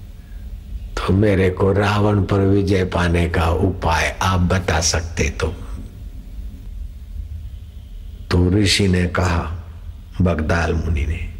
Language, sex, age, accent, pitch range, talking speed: Hindi, male, 60-79, native, 85-95 Hz, 100 wpm